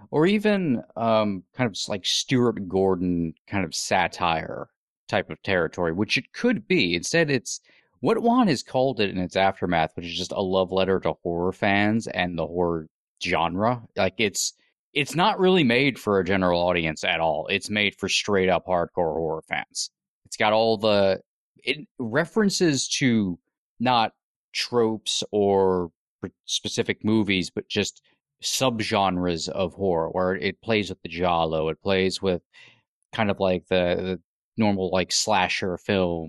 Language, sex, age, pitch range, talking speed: English, male, 30-49, 90-115 Hz, 155 wpm